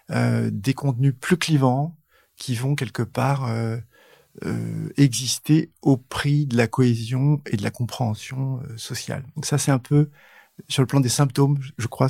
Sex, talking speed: male, 175 wpm